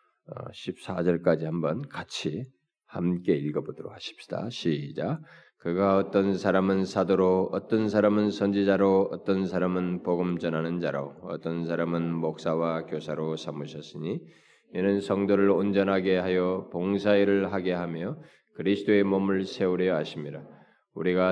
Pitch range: 90-105 Hz